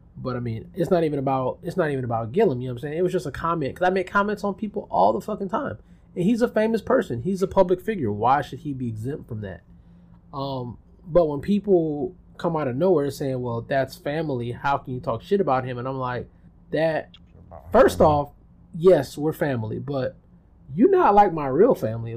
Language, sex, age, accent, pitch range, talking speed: English, male, 20-39, American, 125-170 Hz, 225 wpm